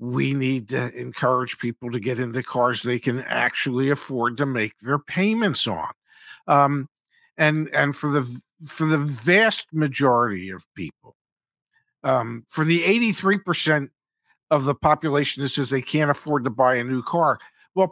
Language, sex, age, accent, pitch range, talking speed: English, male, 50-69, American, 130-175 Hz, 165 wpm